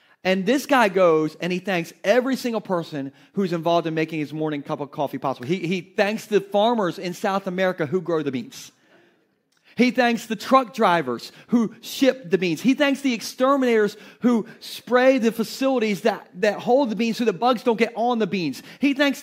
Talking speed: 200 wpm